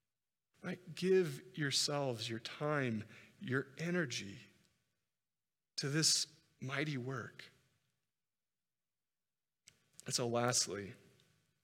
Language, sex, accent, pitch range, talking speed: English, male, American, 125-155 Hz, 65 wpm